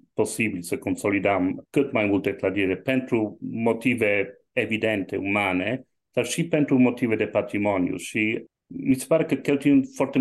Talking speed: 140 wpm